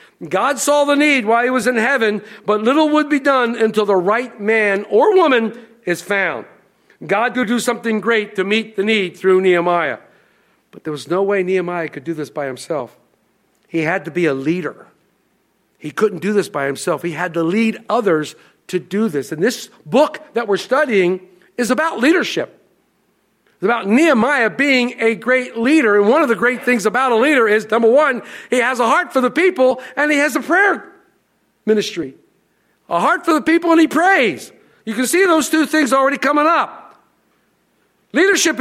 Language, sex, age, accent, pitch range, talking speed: English, male, 50-69, American, 210-290 Hz, 190 wpm